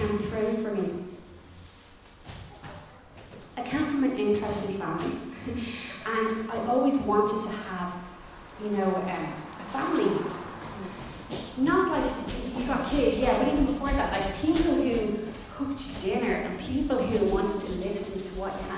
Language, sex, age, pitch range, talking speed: English, female, 30-49, 190-250 Hz, 140 wpm